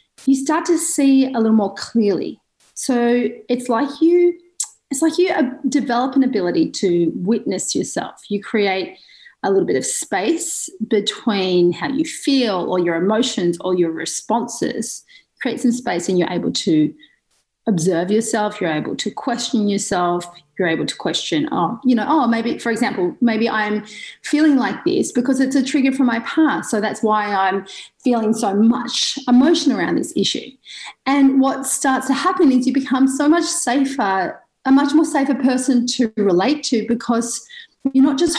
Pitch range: 220-285 Hz